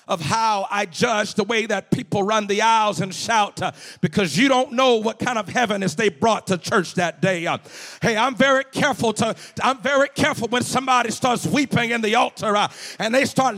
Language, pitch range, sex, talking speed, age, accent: English, 225-300 Hz, male, 215 wpm, 50-69, American